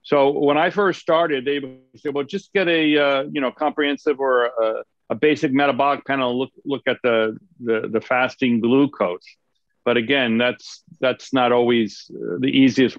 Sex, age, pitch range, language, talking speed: male, 50-69, 115-140 Hz, English, 180 wpm